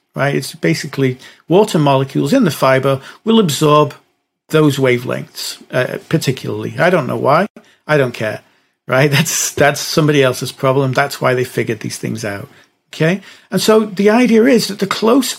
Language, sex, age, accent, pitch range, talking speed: English, male, 50-69, British, 135-190 Hz, 170 wpm